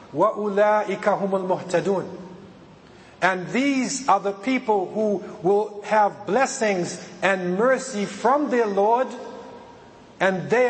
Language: English